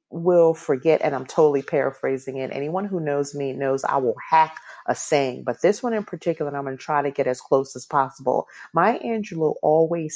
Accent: American